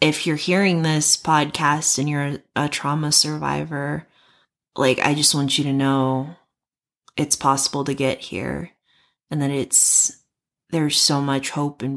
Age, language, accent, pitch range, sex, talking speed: 20-39, English, American, 130-155 Hz, female, 150 wpm